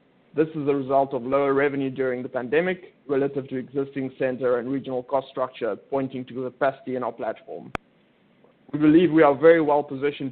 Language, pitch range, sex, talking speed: English, 130-155 Hz, male, 185 wpm